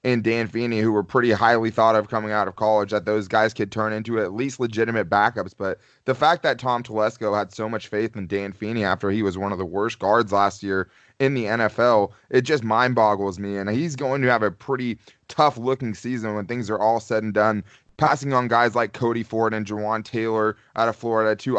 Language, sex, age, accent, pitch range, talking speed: English, male, 20-39, American, 105-120 Hz, 230 wpm